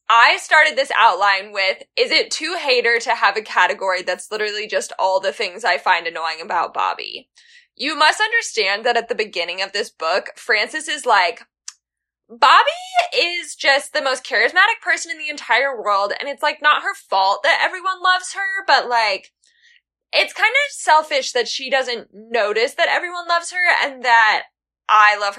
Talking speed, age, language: 180 wpm, 10-29, English